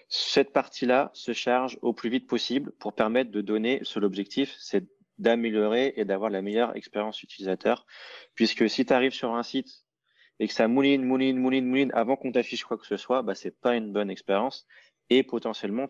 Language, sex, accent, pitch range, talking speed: French, male, French, 100-120 Hz, 195 wpm